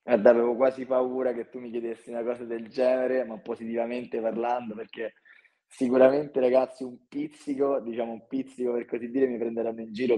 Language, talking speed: Italian, 175 wpm